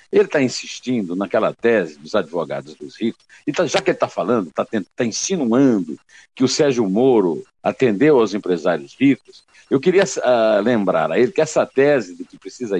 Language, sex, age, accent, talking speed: Portuguese, male, 60-79, Brazilian, 170 wpm